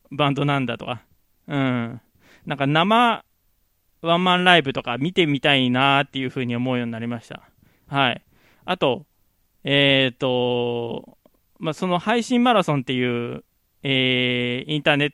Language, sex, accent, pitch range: Japanese, male, native, 125-180 Hz